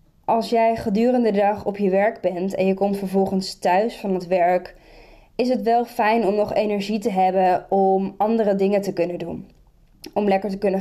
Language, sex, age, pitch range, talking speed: Dutch, female, 20-39, 190-220 Hz, 200 wpm